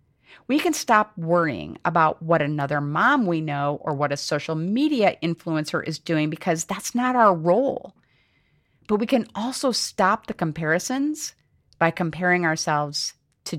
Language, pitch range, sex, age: English, 150-215 Hz, female, 40-59